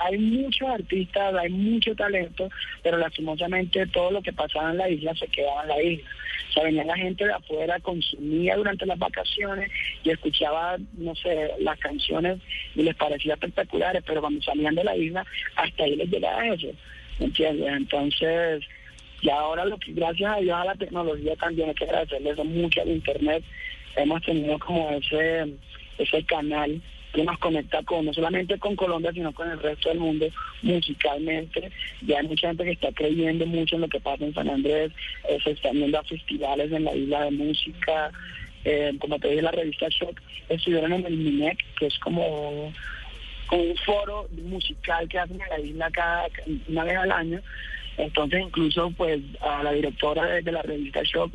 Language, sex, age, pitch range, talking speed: Spanish, male, 30-49, 150-175 Hz, 185 wpm